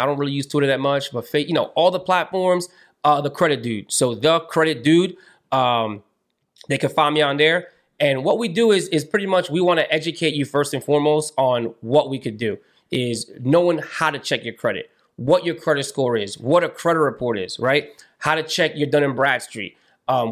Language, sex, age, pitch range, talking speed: English, male, 20-39, 135-170 Hz, 225 wpm